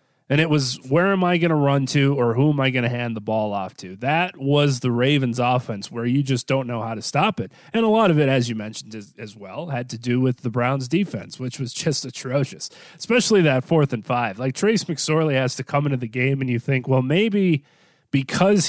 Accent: American